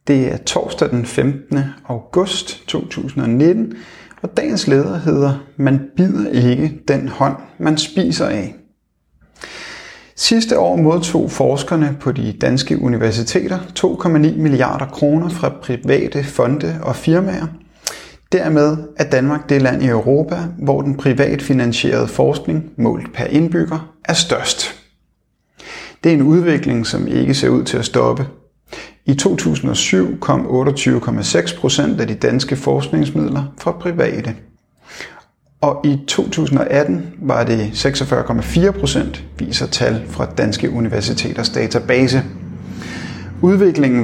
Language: Danish